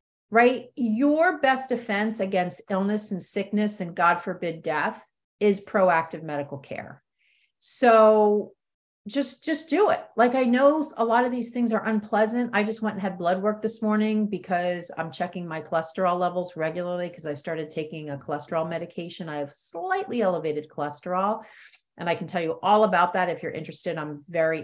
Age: 40-59